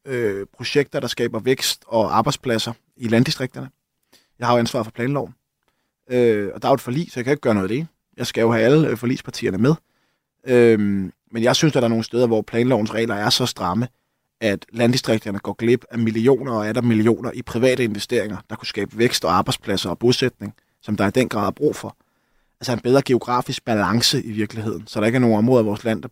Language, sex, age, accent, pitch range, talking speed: Danish, male, 20-39, native, 115-135 Hz, 225 wpm